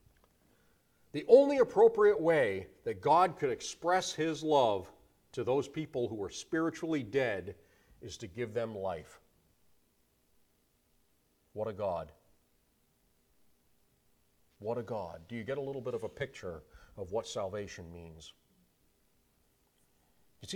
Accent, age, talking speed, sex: American, 40-59, 125 wpm, male